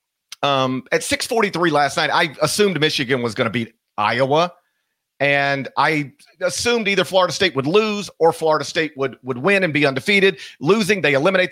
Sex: male